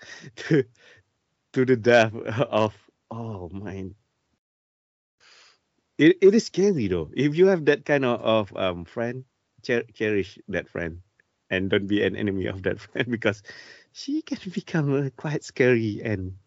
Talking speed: 150 wpm